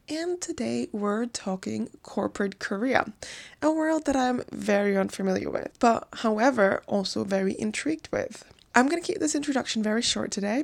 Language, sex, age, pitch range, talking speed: English, female, 20-39, 200-275 Hz, 160 wpm